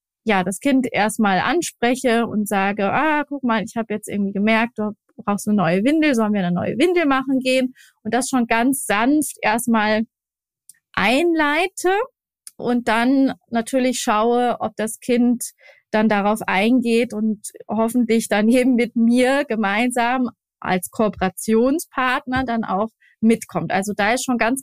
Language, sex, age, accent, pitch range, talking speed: German, female, 20-39, German, 220-270 Hz, 150 wpm